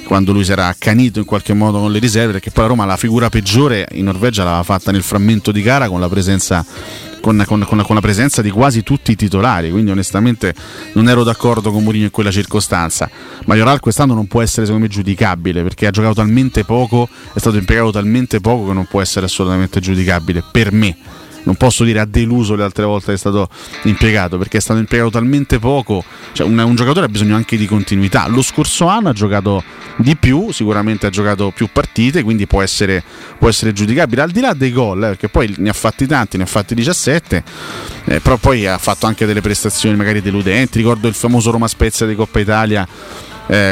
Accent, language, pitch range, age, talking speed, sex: native, Italian, 100-115 Hz, 30-49, 215 wpm, male